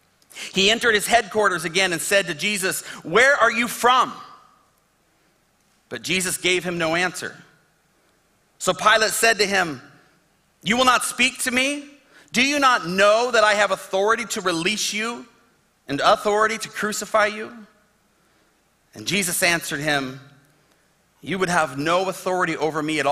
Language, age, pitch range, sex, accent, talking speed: English, 40-59, 175-225 Hz, male, American, 150 wpm